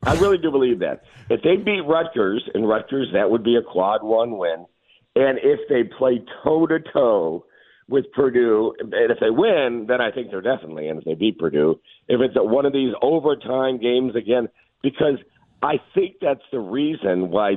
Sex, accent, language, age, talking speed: male, American, English, 50-69, 185 wpm